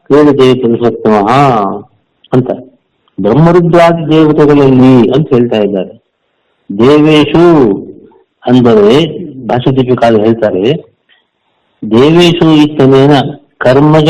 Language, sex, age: Kannada, male, 50-69